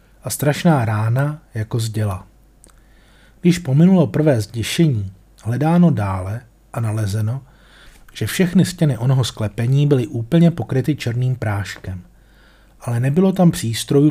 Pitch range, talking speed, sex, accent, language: 110-145 Hz, 120 wpm, male, native, Czech